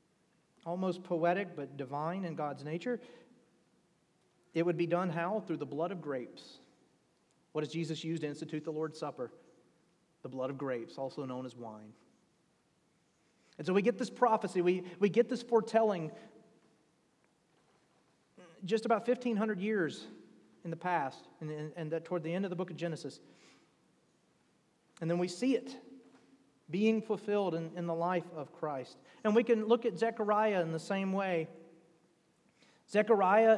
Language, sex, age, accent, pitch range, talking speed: English, male, 40-59, American, 165-215 Hz, 155 wpm